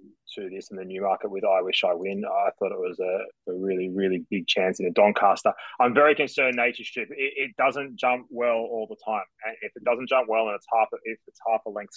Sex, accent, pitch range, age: male, Australian, 100-155 Hz, 20-39